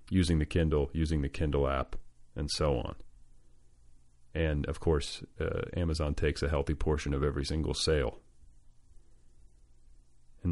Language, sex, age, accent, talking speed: English, male, 30-49, American, 135 wpm